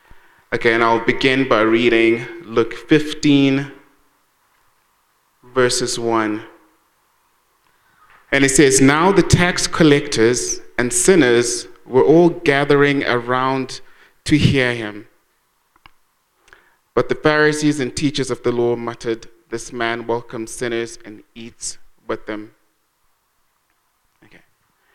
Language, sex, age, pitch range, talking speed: English, male, 30-49, 120-145 Hz, 105 wpm